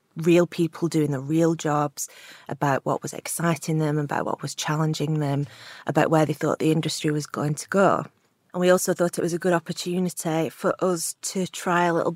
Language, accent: English, British